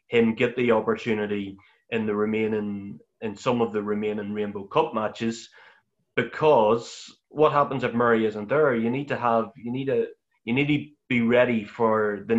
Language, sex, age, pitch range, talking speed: English, male, 30-49, 105-125 Hz, 175 wpm